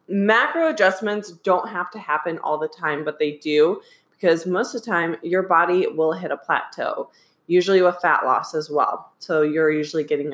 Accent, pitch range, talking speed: American, 155-200 Hz, 190 wpm